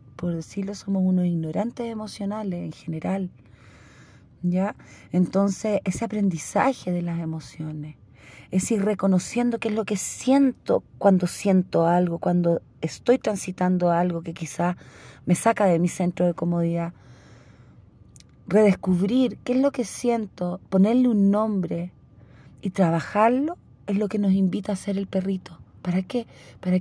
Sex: female